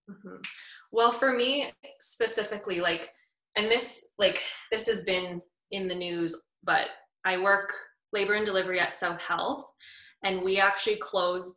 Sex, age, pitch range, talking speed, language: female, 20-39, 175-220 Hz, 150 wpm, English